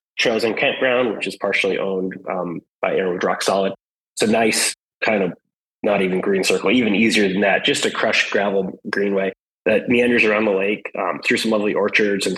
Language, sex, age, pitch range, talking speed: English, male, 20-39, 95-115 Hz, 195 wpm